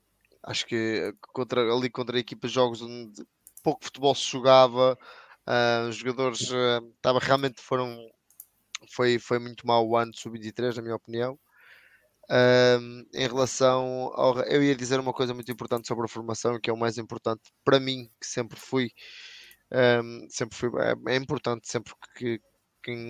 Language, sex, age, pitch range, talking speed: Portuguese, male, 20-39, 115-130 Hz, 170 wpm